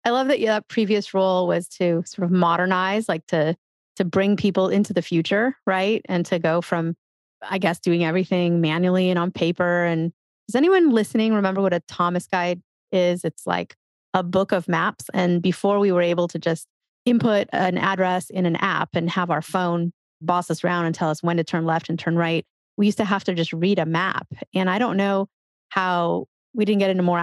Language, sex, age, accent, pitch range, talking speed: English, female, 30-49, American, 175-205 Hz, 215 wpm